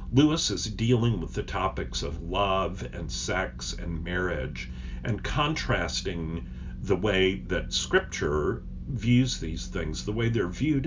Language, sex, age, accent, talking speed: English, male, 50-69, American, 140 wpm